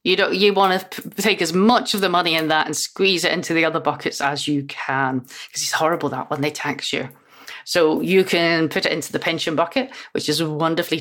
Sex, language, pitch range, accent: female, English, 145-190 Hz, British